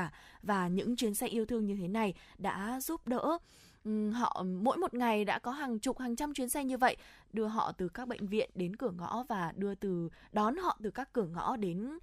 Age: 20-39